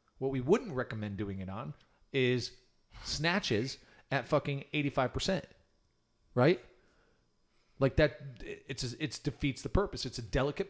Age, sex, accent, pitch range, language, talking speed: 40-59, male, American, 120-145 Hz, English, 130 wpm